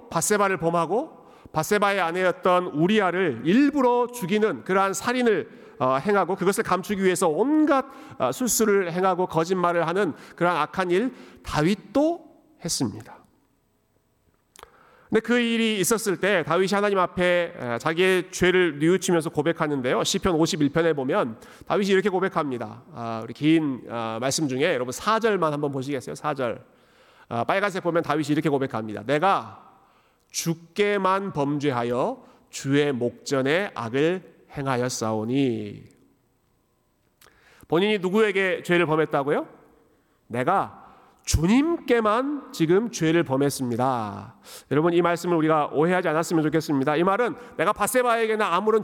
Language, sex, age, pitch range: Korean, male, 40-59, 150-205 Hz